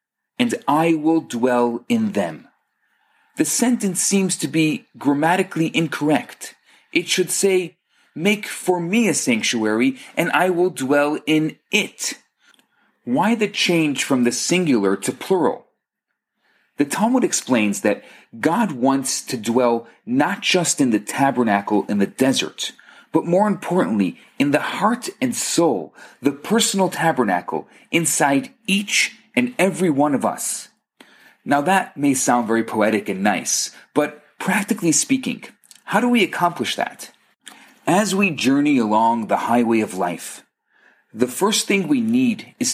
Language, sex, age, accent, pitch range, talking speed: English, male, 40-59, Canadian, 145-225 Hz, 140 wpm